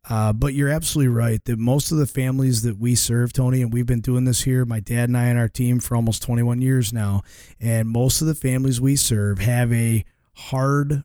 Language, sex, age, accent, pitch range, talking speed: English, male, 30-49, American, 115-135 Hz, 230 wpm